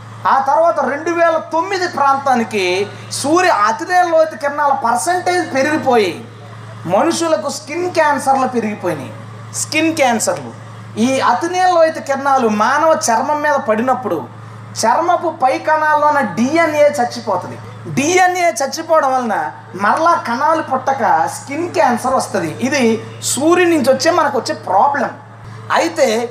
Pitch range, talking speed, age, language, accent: 210-320 Hz, 110 wpm, 20-39, Telugu, native